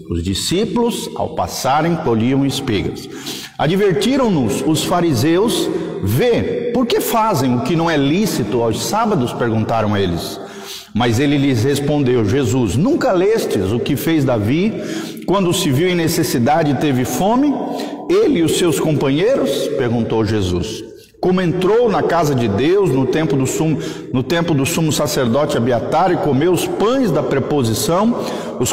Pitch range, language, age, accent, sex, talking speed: 115-175 Hz, Portuguese, 50-69, Brazilian, male, 150 wpm